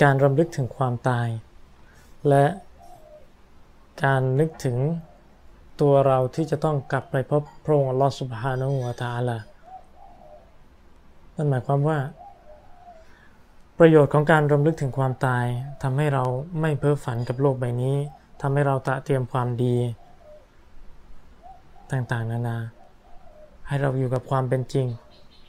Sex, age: male, 20-39